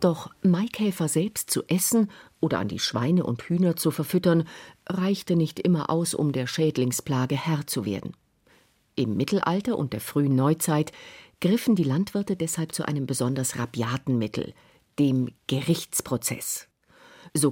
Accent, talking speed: German, 140 wpm